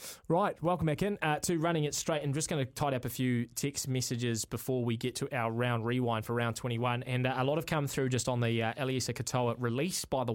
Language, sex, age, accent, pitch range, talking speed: English, male, 20-39, Australian, 120-145 Hz, 260 wpm